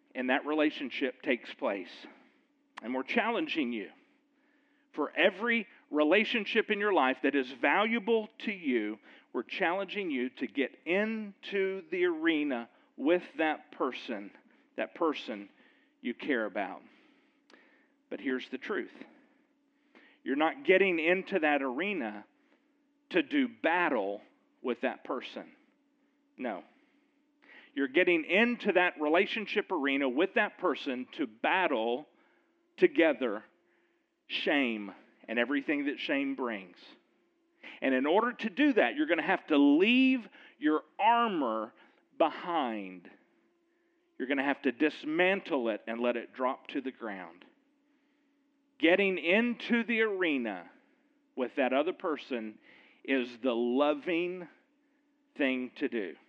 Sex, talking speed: male, 120 wpm